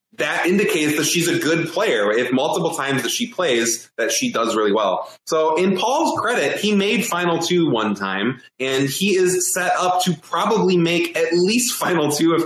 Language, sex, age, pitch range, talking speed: English, male, 20-39, 130-185 Hz, 195 wpm